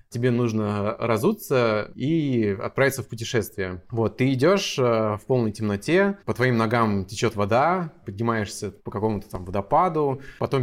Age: 20-39